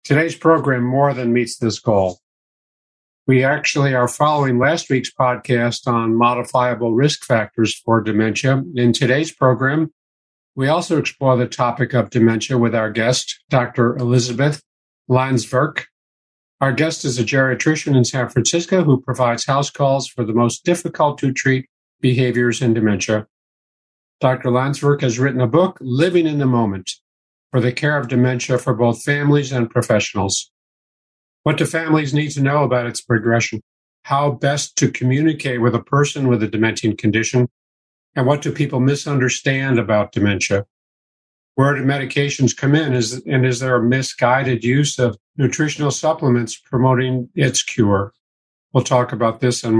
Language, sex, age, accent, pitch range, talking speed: English, male, 50-69, American, 115-140 Hz, 155 wpm